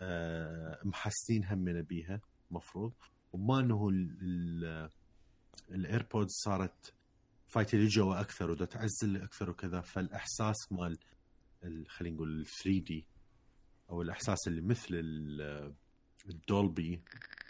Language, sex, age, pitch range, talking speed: Arabic, male, 30-49, 85-100 Hz, 80 wpm